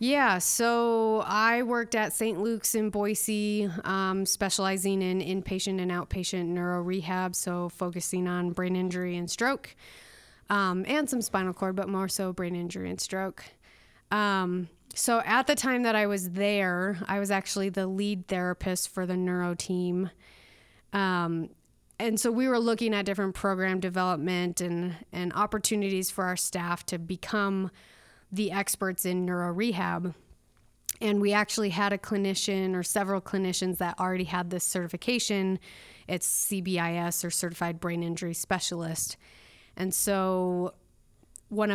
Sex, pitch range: female, 180-205 Hz